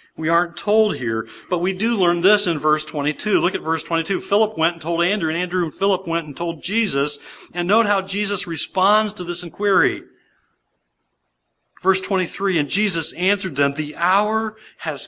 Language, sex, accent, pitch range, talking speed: English, male, American, 150-190 Hz, 185 wpm